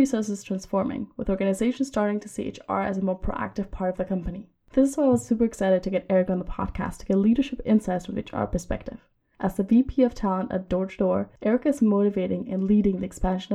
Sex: female